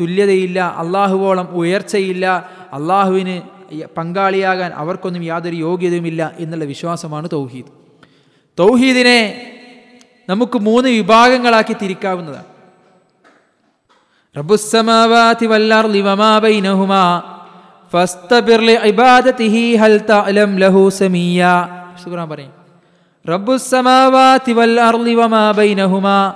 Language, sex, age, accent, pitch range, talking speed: Malayalam, male, 20-39, native, 185-230 Hz, 30 wpm